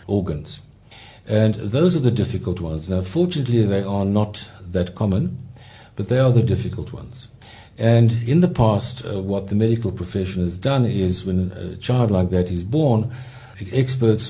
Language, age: English, 60-79